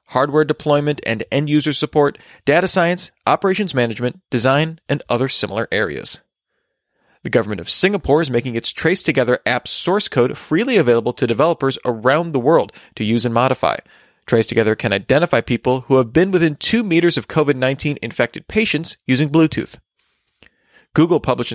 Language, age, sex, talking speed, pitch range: English, 30-49, male, 155 wpm, 120-160 Hz